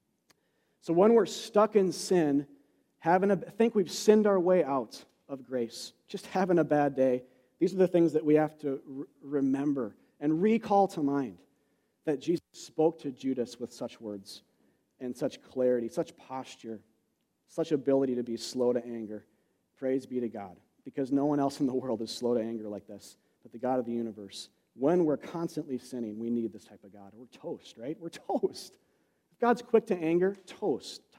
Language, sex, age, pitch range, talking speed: English, male, 40-59, 125-180 Hz, 185 wpm